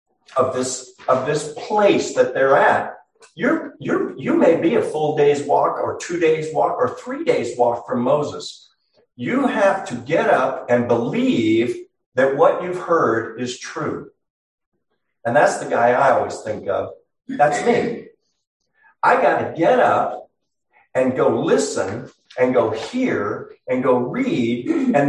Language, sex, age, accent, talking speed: English, male, 50-69, American, 155 wpm